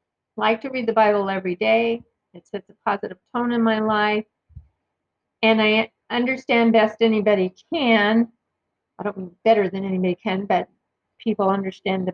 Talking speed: 160 wpm